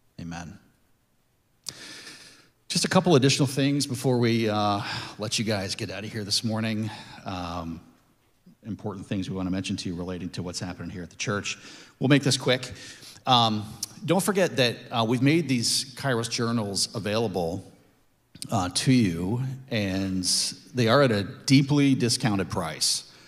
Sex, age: male, 40-59